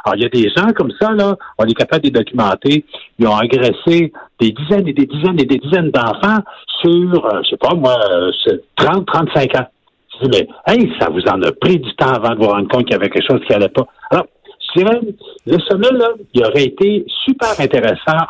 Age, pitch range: 60-79, 130-215 Hz